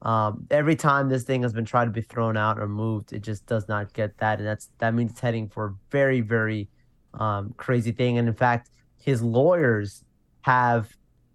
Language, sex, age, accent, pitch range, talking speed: English, male, 20-39, American, 110-125 Hz, 205 wpm